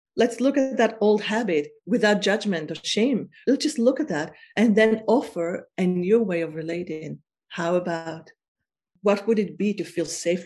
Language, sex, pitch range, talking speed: English, female, 165-215 Hz, 185 wpm